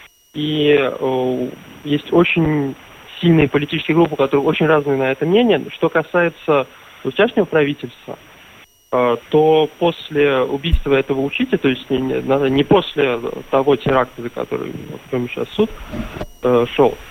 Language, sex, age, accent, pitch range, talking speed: Russian, male, 20-39, native, 135-160 Hz, 130 wpm